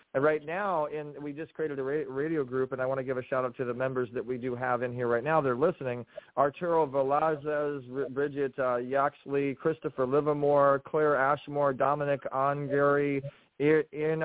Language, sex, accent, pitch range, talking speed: English, male, American, 135-150 Hz, 185 wpm